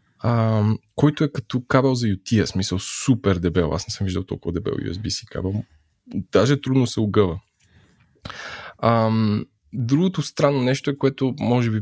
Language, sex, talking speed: Bulgarian, male, 150 wpm